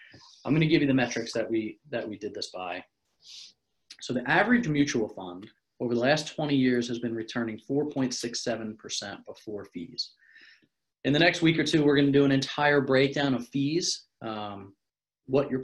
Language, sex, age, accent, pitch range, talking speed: English, male, 30-49, American, 115-140 Hz, 185 wpm